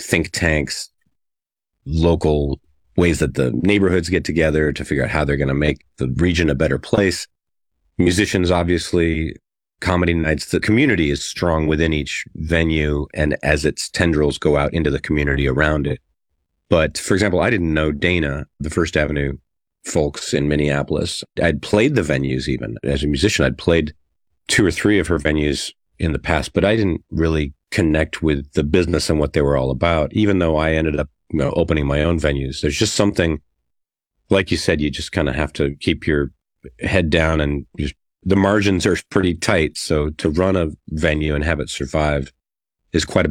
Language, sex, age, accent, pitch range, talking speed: English, male, 40-59, American, 75-90 Hz, 190 wpm